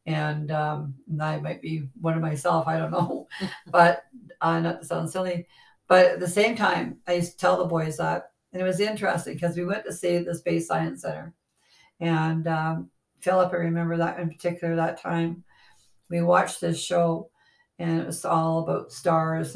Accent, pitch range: American, 165-180 Hz